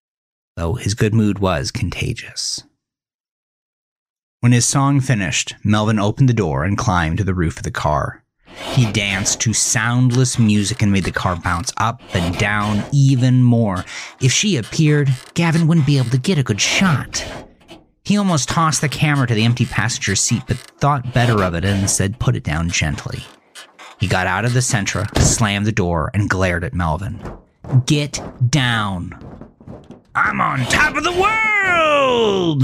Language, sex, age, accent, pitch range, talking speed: English, male, 30-49, American, 105-140 Hz, 170 wpm